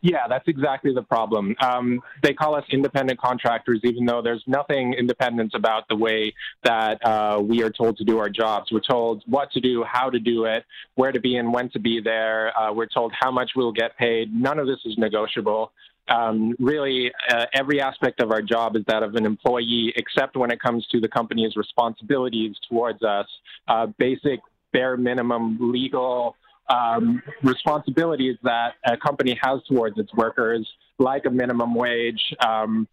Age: 20-39